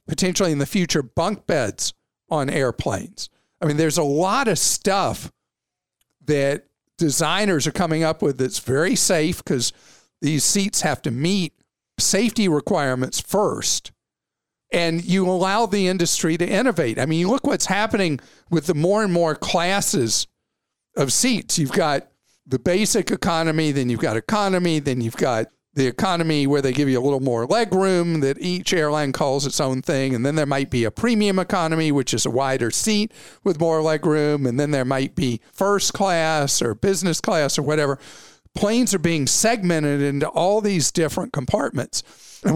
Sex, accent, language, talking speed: male, American, English, 175 wpm